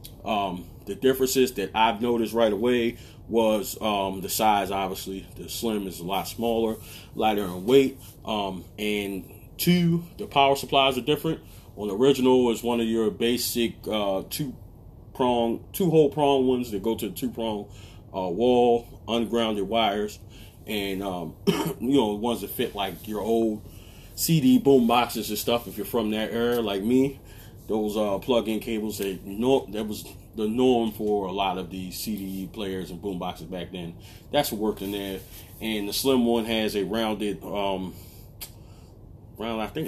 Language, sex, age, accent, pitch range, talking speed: English, male, 30-49, American, 100-115 Hz, 175 wpm